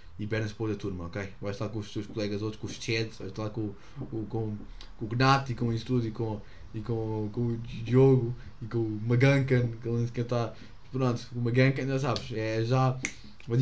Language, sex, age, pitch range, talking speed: English, male, 20-39, 100-120 Hz, 225 wpm